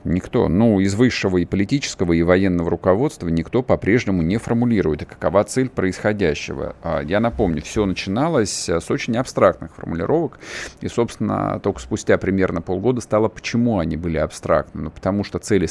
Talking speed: 150 wpm